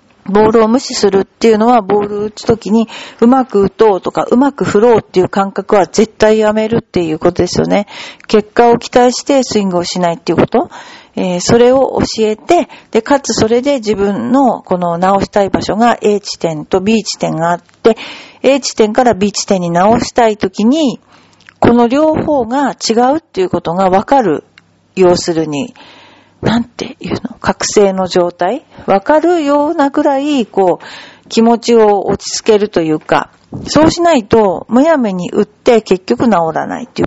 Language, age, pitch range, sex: Japanese, 50-69, 190-245 Hz, female